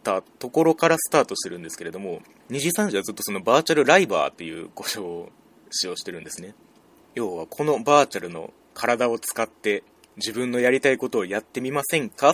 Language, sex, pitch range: Japanese, male, 100-145 Hz